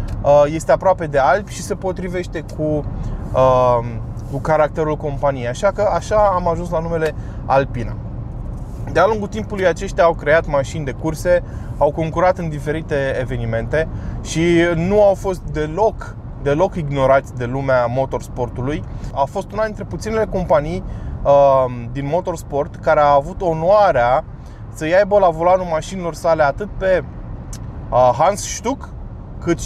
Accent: native